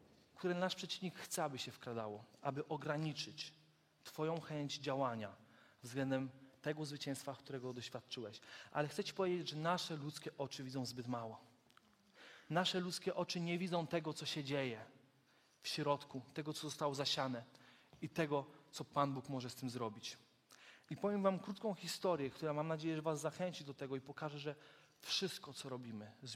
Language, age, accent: Polish, 30-49, native